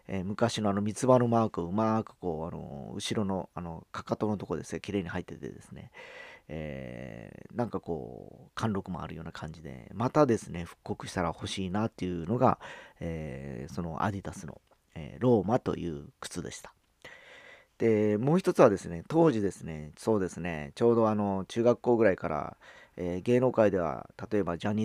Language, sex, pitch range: Japanese, male, 85-115 Hz